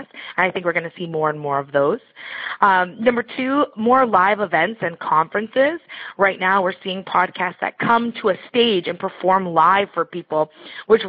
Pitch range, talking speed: 170-205 Hz, 195 wpm